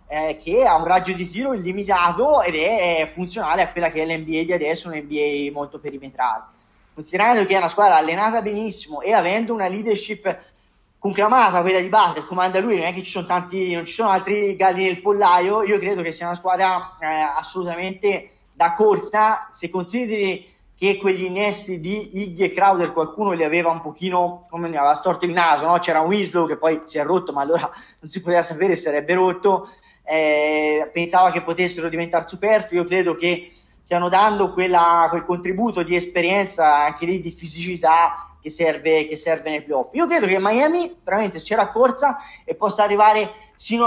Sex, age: male, 20-39